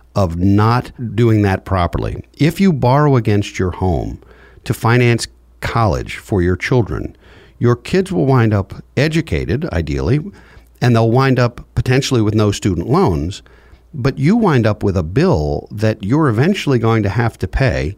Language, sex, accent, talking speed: English, male, American, 160 wpm